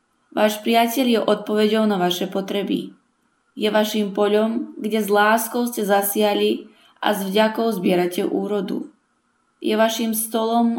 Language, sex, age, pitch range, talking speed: Slovak, female, 20-39, 190-225 Hz, 130 wpm